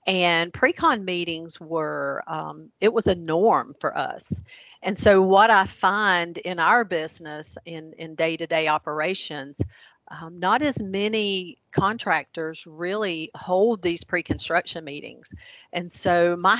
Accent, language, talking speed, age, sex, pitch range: American, English, 130 wpm, 40-59, female, 160-195 Hz